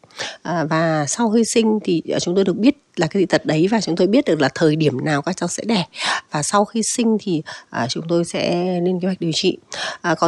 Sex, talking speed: female, 255 wpm